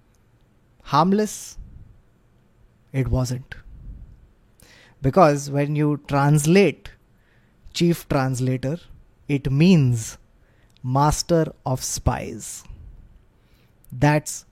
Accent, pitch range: Indian, 130-160 Hz